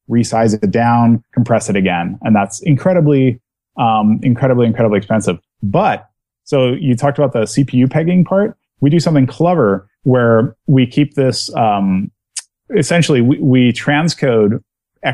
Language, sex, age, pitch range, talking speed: English, male, 30-49, 110-140 Hz, 140 wpm